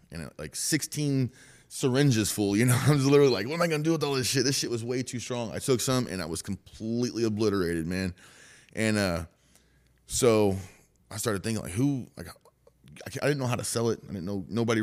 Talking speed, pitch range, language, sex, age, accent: 225 wpm, 95-130 Hz, English, male, 30-49, American